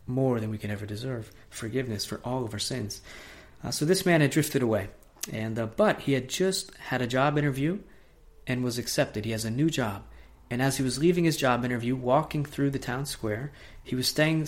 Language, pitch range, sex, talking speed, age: English, 120-140 Hz, male, 220 wpm, 30-49